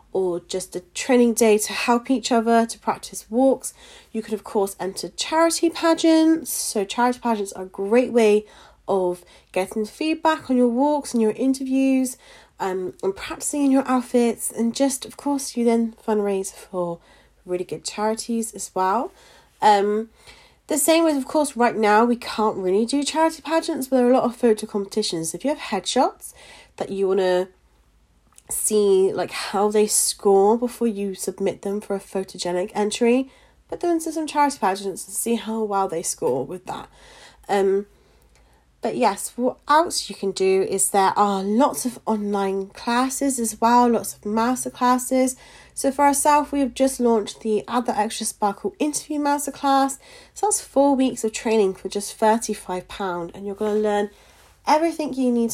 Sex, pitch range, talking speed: female, 195-265 Hz, 180 wpm